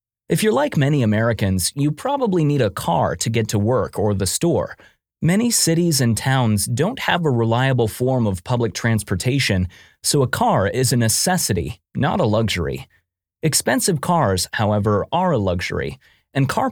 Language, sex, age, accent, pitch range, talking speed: English, male, 30-49, American, 105-155 Hz, 165 wpm